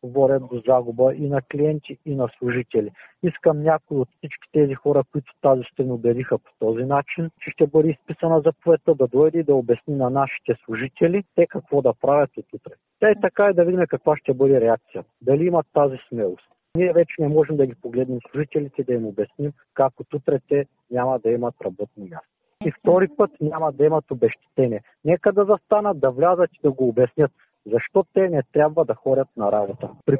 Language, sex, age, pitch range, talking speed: Bulgarian, male, 50-69, 135-170 Hz, 195 wpm